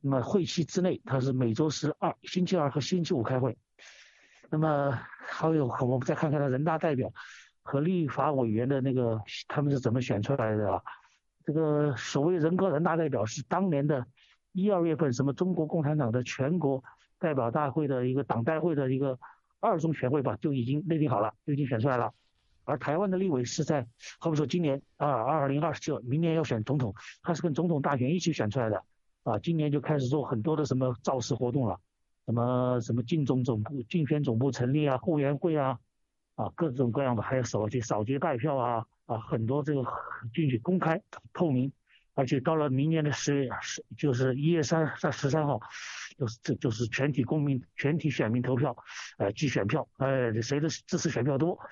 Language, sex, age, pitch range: Chinese, male, 50-69, 125-160 Hz